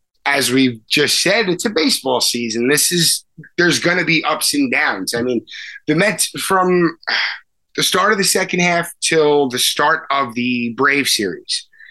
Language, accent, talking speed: English, American, 175 wpm